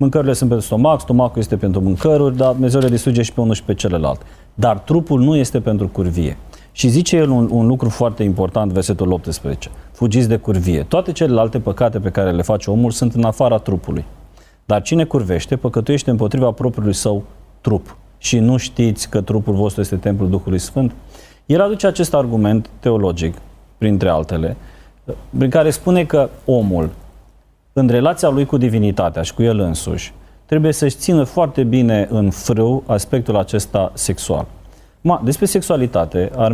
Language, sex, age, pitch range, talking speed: Romanian, male, 30-49, 95-135 Hz, 165 wpm